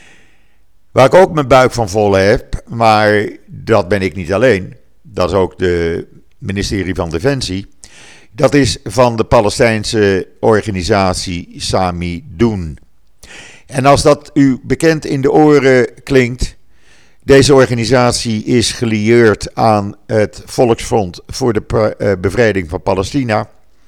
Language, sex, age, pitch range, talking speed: Dutch, male, 50-69, 95-125 Hz, 125 wpm